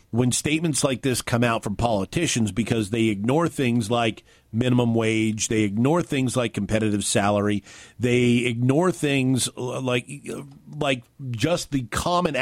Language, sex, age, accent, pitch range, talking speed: English, male, 50-69, American, 115-145 Hz, 140 wpm